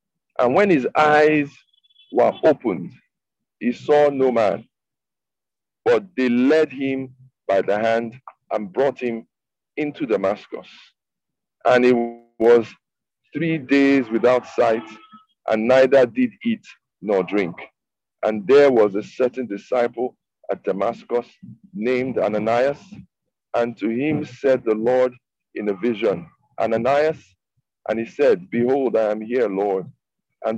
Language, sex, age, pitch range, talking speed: English, male, 50-69, 110-140 Hz, 125 wpm